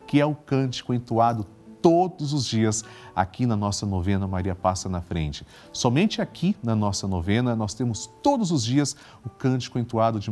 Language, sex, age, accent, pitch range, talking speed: Portuguese, male, 40-59, Brazilian, 90-120 Hz, 175 wpm